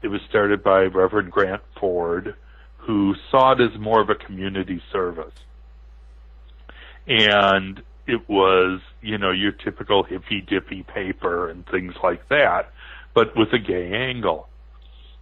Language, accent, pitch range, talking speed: English, American, 85-105 Hz, 135 wpm